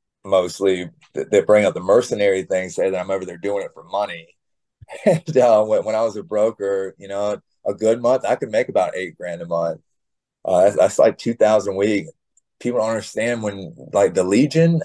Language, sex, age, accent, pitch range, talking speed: English, male, 30-49, American, 95-145 Hz, 205 wpm